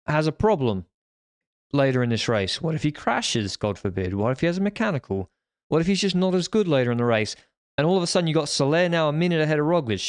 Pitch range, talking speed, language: 125-165 Hz, 270 wpm, English